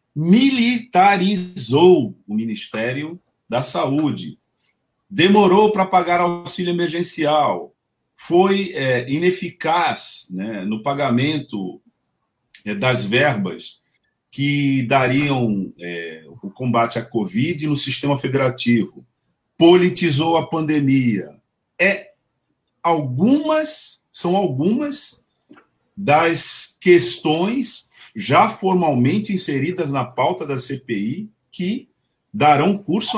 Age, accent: 50-69, Brazilian